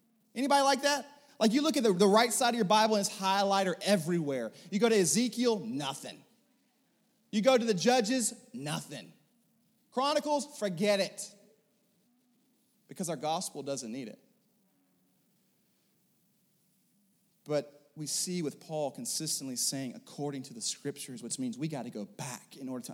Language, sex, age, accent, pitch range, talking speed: English, male, 30-49, American, 155-235 Hz, 150 wpm